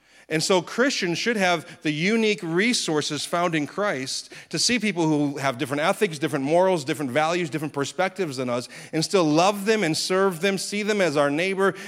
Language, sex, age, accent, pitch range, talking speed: English, male, 30-49, American, 120-170 Hz, 190 wpm